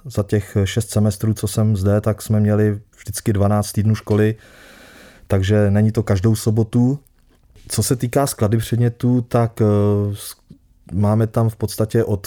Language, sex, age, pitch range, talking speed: Czech, male, 20-39, 100-115 Hz, 145 wpm